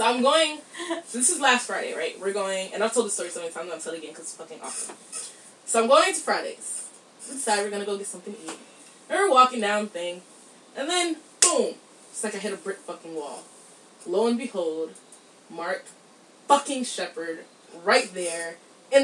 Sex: female